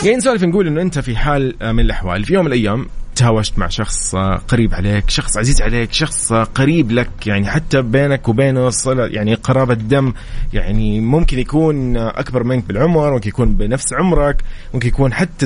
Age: 30-49